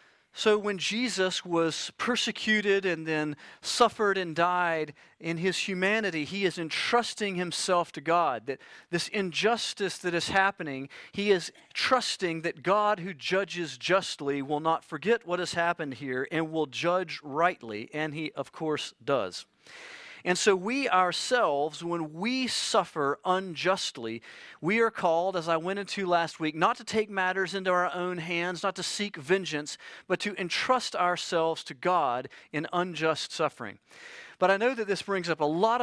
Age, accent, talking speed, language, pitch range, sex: 40-59, American, 160 wpm, English, 155-195 Hz, male